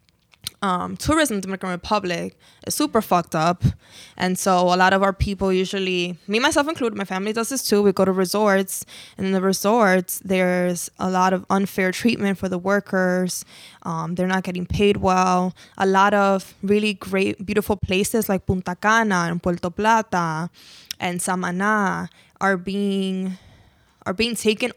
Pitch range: 180-200 Hz